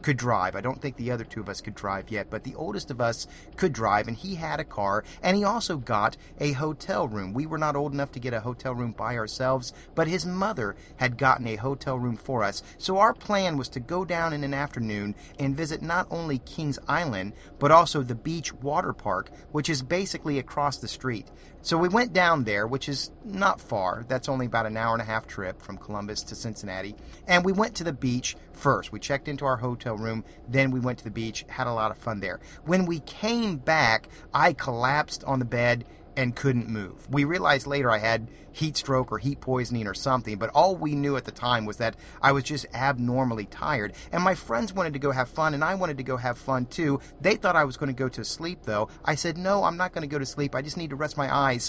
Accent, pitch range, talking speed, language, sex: American, 115-155 Hz, 245 wpm, English, male